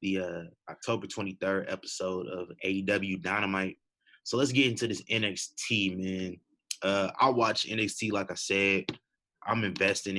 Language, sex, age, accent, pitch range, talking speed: English, male, 20-39, American, 95-105 Hz, 140 wpm